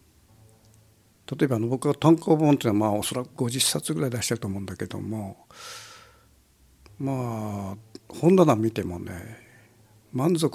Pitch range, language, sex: 95-125 Hz, Japanese, male